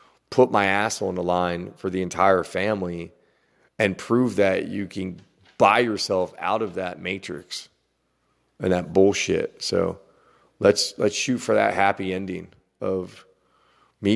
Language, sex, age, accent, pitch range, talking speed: English, male, 30-49, American, 95-110 Hz, 145 wpm